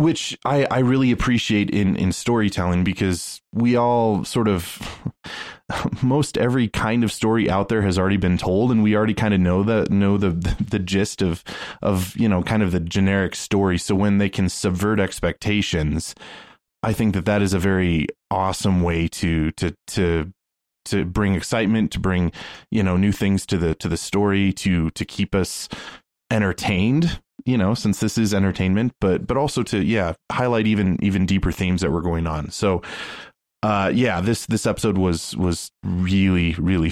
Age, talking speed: 20-39, 180 wpm